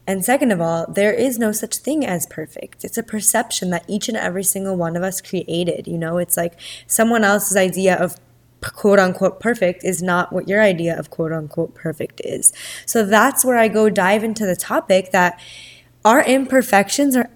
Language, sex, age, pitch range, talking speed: English, female, 20-39, 175-220 Hz, 190 wpm